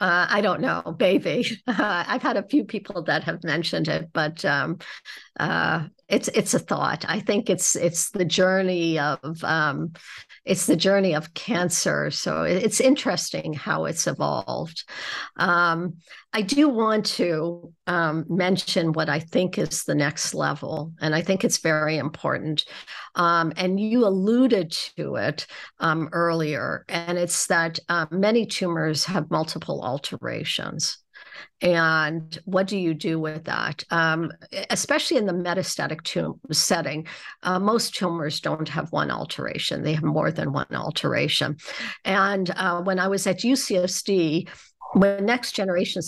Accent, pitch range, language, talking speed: American, 160-195 Hz, English, 145 wpm